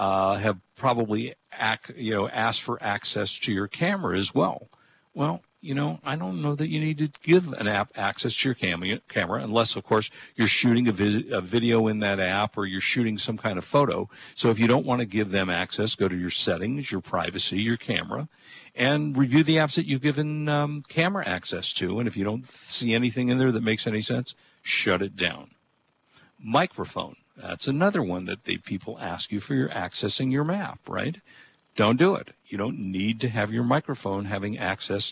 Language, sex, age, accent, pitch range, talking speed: English, male, 50-69, American, 100-130 Hz, 200 wpm